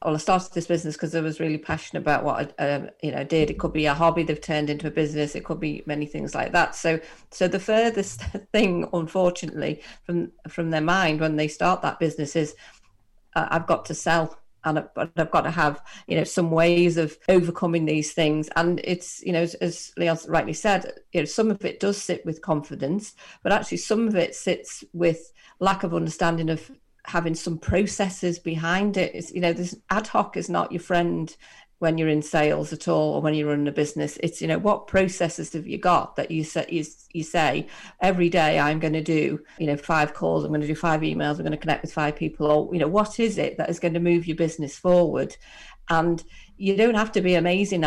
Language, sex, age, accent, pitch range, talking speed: English, female, 40-59, British, 155-180 Hz, 230 wpm